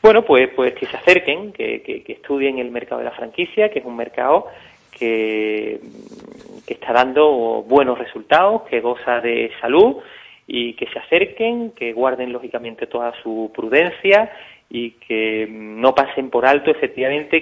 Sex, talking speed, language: male, 160 wpm, Spanish